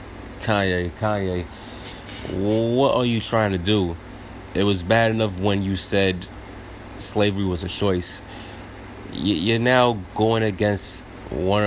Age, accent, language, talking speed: 30-49, American, English, 125 wpm